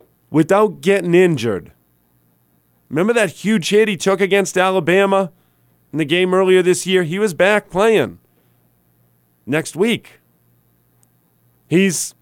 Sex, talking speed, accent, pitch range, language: male, 120 wpm, American, 120-200 Hz, English